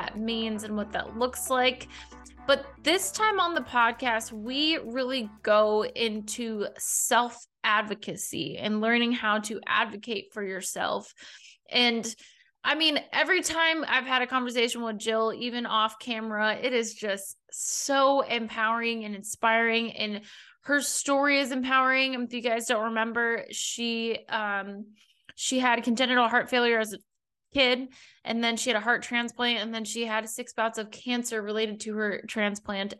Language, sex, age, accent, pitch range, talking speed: English, female, 20-39, American, 215-245 Hz, 155 wpm